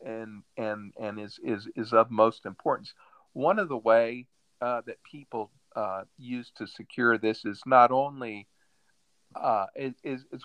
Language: English